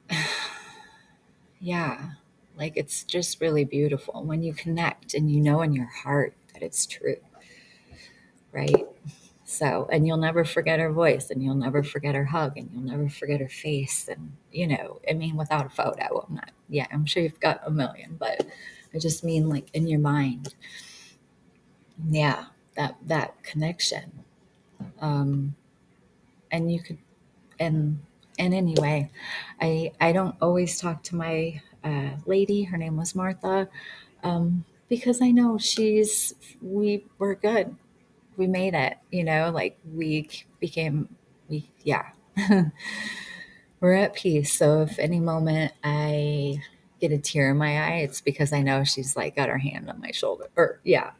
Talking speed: 155 wpm